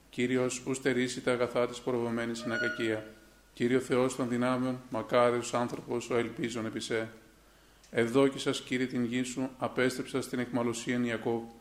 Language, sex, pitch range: Greek, male, 120-130 Hz